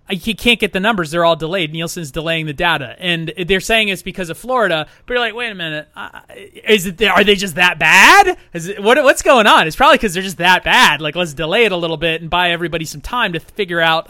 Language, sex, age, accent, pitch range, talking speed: English, male, 30-49, American, 170-230 Hz, 260 wpm